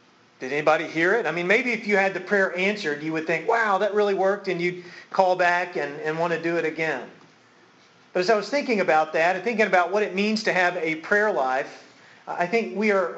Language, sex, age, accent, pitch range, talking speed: English, male, 40-59, American, 175-210 Hz, 240 wpm